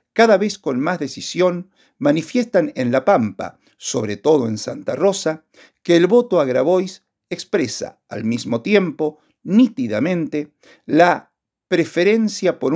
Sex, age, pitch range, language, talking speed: male, 50-69, 135-200 Hz, Spanish, 125 wpm